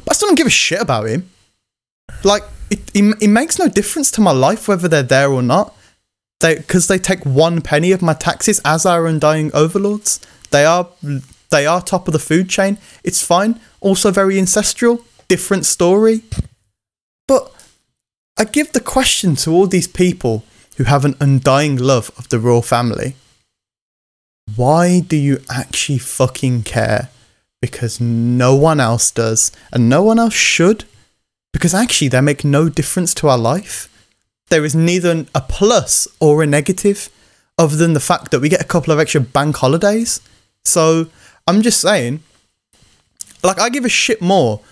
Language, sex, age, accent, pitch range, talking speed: English, male, 20-39, British, 125-185 Hz, 170 wpm